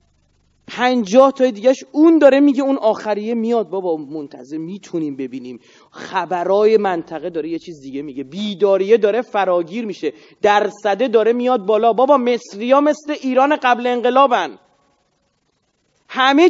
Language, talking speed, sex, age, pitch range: Persian, 125 wpm, male, 30-49, 170-260 Hz